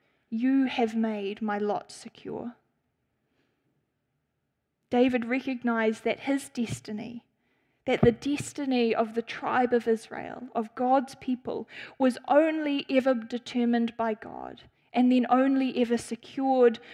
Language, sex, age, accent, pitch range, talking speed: English, female, 10-29, Australian, 230-265 Hz, 115 wpm